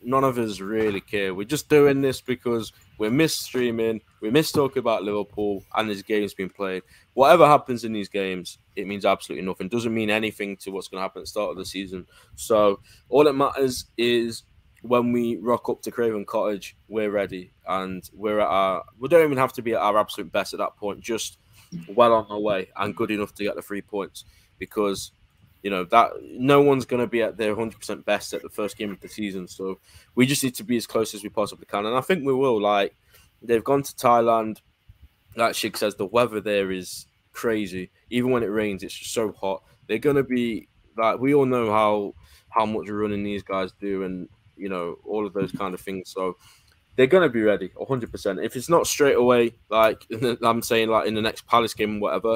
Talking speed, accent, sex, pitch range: 225 wpm, British, male, 100-120 Hz